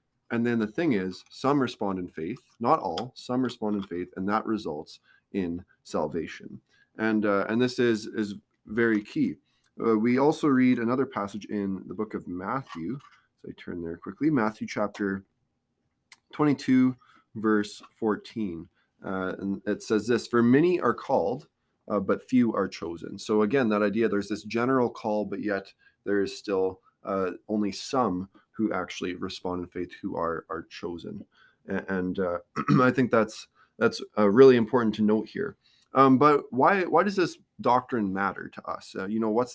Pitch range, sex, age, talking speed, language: 100-125 Hz, male, 20-39, 175 wpm, English